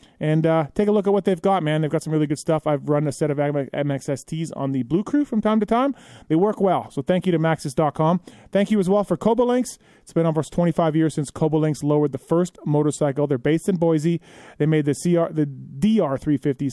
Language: English